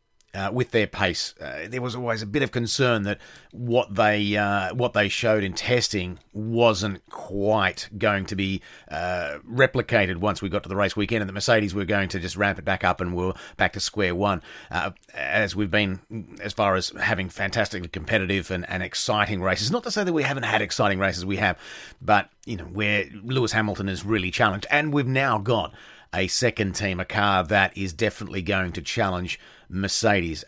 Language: English